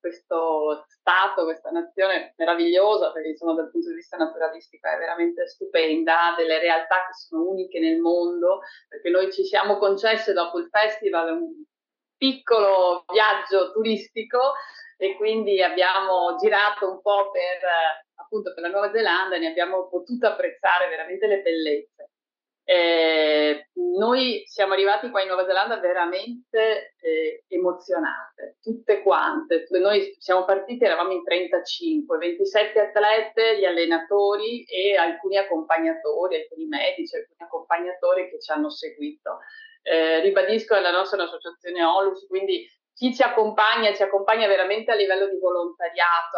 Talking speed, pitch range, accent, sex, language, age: 140 wpm, 175-255 Hz, native, female, Italian, 30-49